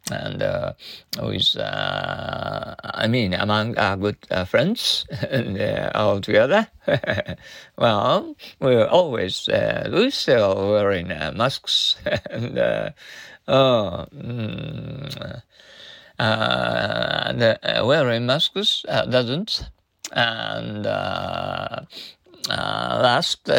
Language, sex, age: Japanese, male, 50-69